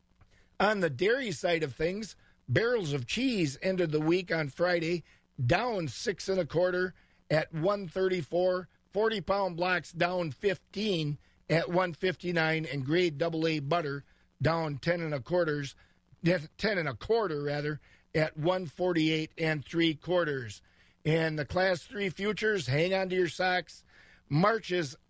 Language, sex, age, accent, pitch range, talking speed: English, male, 50-69, American, 155-185 Hz, 150 wpm